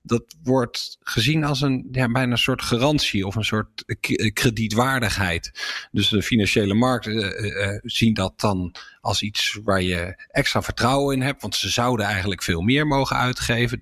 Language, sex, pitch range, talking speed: English, male, 100-125 Hz, 155 wpm